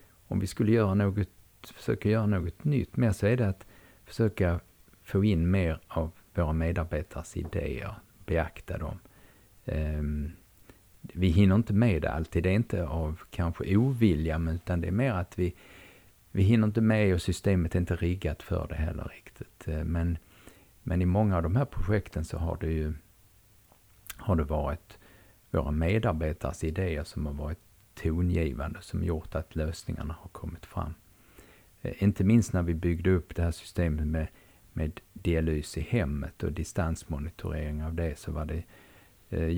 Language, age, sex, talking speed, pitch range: Swedish, 50-69, male, 160 wpm, 85-105 Hz